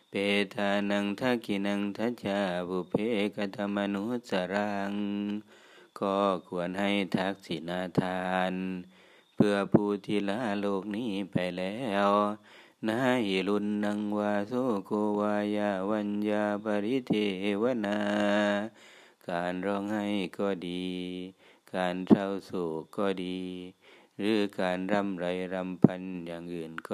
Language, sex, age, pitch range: Thai, male, 30-49, 95-105 Hz